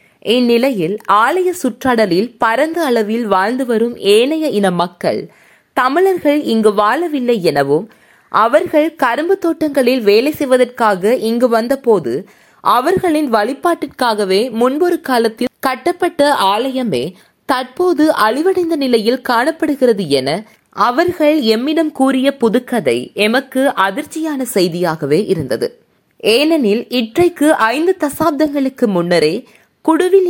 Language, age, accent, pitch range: Tamil, 20-39, native, 225-310 Hz